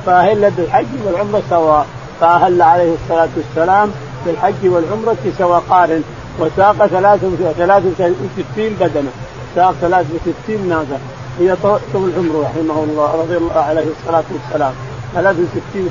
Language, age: Arabic, 50-69